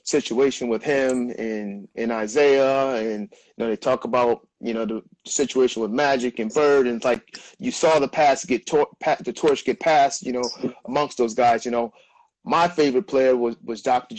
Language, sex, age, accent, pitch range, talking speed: English, male, 30-49, American, 125-145 Hz, 195 wpm